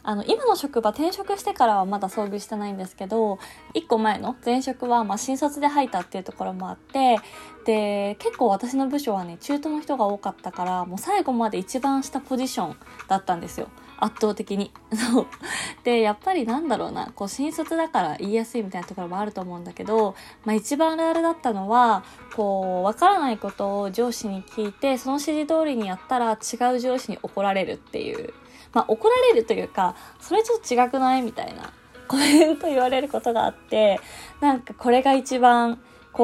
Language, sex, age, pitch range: Japanese, female, 20-39, 200-270 Hz